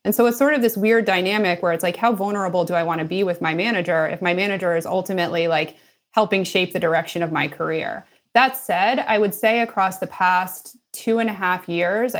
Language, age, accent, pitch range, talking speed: English, 30-49, American, 170-210 Hz, 230 wpm